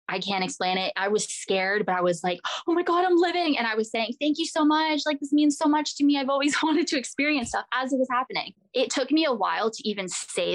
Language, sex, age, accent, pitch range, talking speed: English, female, 20-39, American, 185-245 Hz, 280 wpm